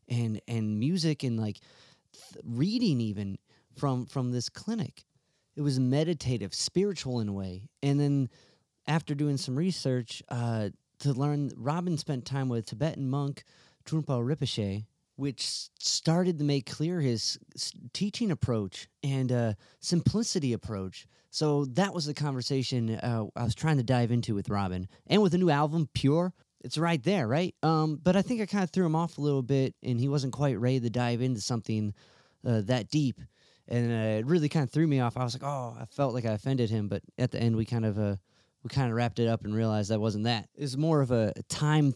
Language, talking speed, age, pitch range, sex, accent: English, 205 wpm, 30-49, 115-145 Hz, male, American